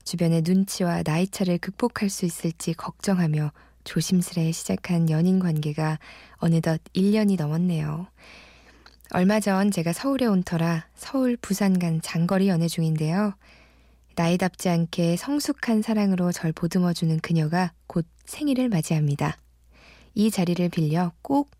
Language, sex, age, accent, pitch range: Korean, female, 20-39, native, 160-195 Hz